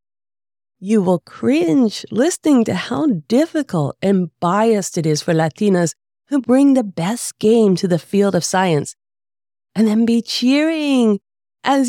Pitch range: 155-230 Hz